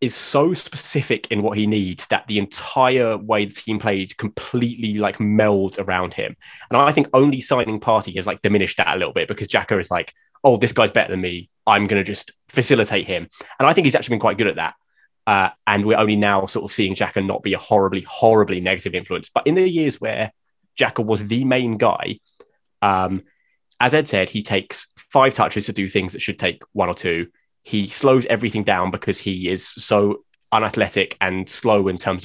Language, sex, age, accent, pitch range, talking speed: English, male, 20-39, British, 95-115 Hz, 210 wpm